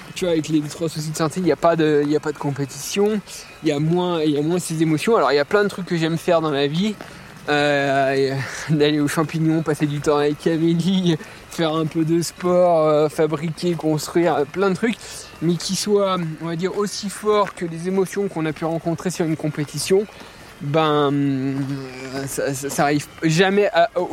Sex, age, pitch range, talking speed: male, 20-39, 150-185 Hz, 205 wpm